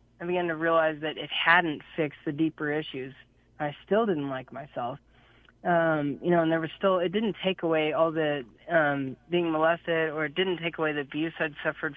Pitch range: 150-175 Hz